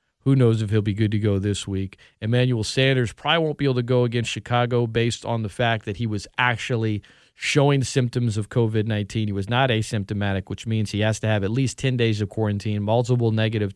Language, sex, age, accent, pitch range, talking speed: English, male, 40-59, American, 110-150 Hz, 220 wpm